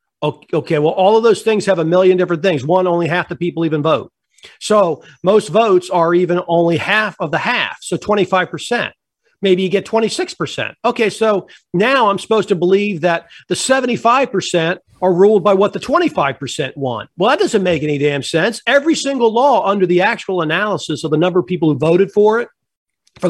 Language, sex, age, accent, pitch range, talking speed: English, male, 50-69, American, 175-225 Hz, 195 wpm